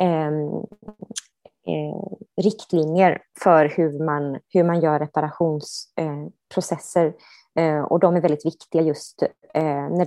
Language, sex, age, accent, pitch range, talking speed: Swedish, female, 20-39, native, 150-180 Hz, 120 wpm